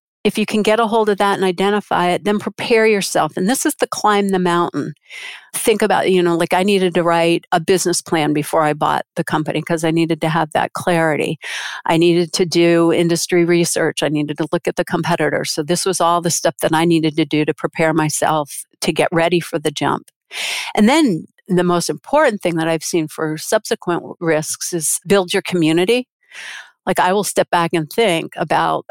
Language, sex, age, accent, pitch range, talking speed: English, female, 50-69, American, 160-190 Hz, 210 wpm